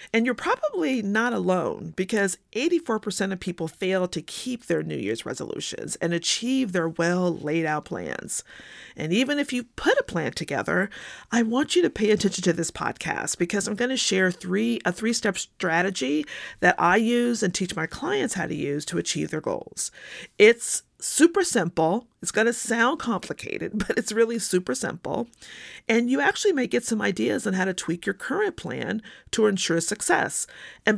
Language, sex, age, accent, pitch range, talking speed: English, female, 40-59, American, 175-230 Hz, 180 wpm